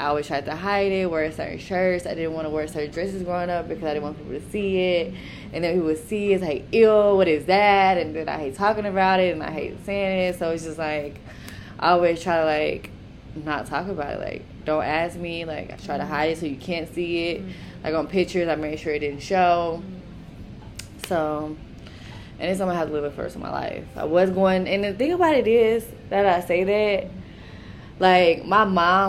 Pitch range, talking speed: 160-195 Hz, 235 wpm